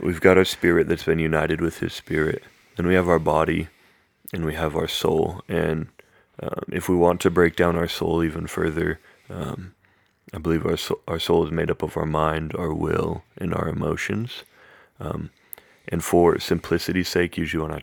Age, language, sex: 30-49, English, male